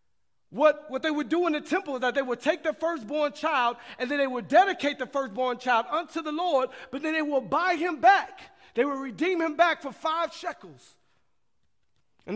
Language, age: English, 40-59